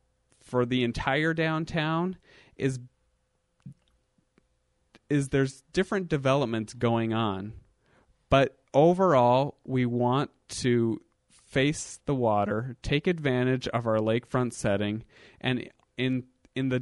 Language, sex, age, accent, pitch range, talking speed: English, male, 30-49, American, 110-130 Hz, 105 wpm